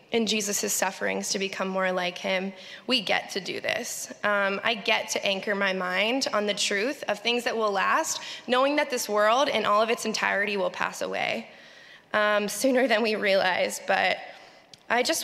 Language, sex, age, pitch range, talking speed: English, female, 10-29, 200-260 Hz, 190 wpm